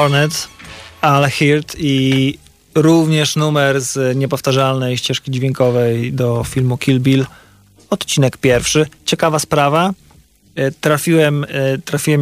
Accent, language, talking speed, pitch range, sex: native, Polish, 95 wpm, 130-155 Hz, male